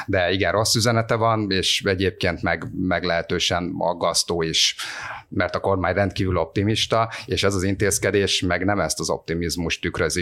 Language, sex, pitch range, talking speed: Hungarian, male, 90-105 Hz, 160 wpm